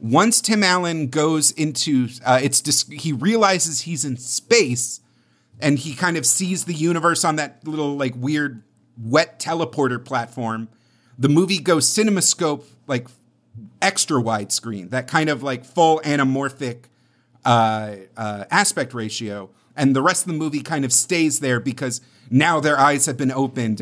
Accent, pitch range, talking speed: American, 125-155 Hz, 155 wpm